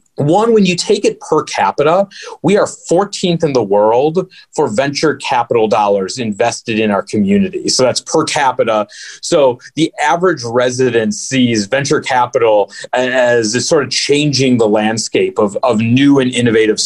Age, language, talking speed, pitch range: 30-49, English, 155 wpm, 115-160 Hz